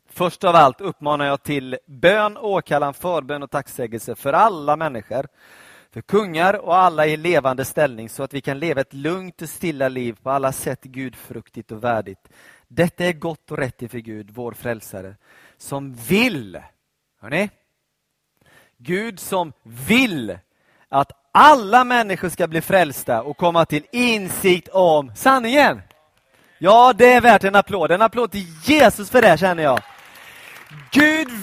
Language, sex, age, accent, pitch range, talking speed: Swedish, male, 30-49, native, 145-240 Hz, 155 wpm